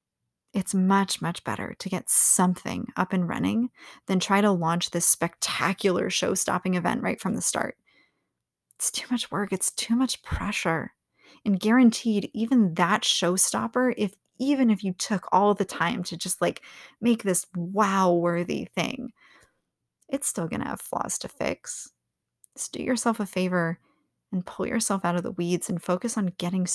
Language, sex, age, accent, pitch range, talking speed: English, female, 20-39, American, 180-225 Hz, 165 wpm